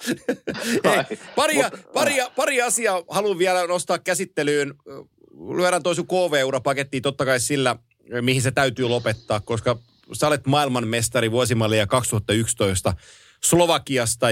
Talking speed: 115 wpm